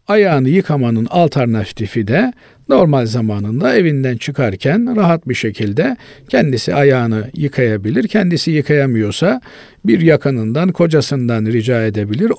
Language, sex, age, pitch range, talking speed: Turkish, male, 50-69, 115-145 Hz, 100 wpm